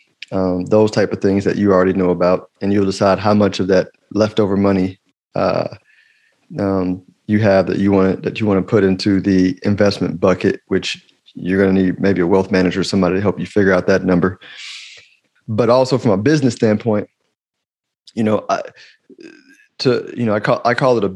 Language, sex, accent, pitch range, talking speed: English, male, American, 100-120 Hz, 205 wpm